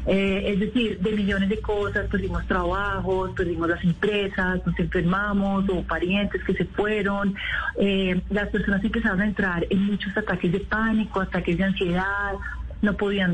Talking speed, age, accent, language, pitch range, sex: 155 wpm, 30-49, Colombian, Spanish, 195-230 Hz, female